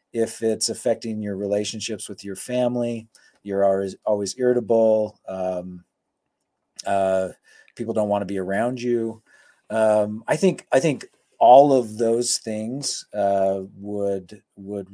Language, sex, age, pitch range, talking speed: English, male, 40-59, 100-120 Hz, 130 wpm